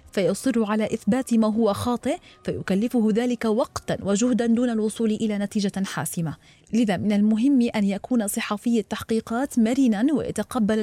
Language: Arabic